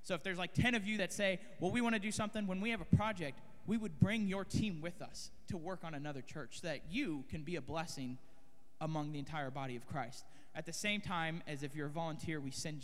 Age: 20-39